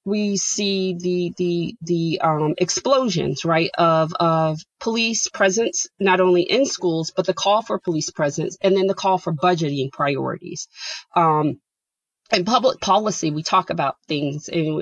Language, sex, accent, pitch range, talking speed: English, female, American, 165-200 Hz, 155 wpm